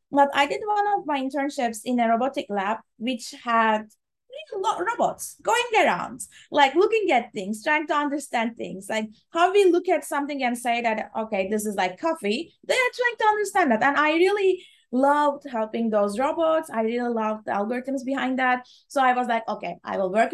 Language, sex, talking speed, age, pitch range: English, female, 195 wpm, 20-39, 220-300 Hz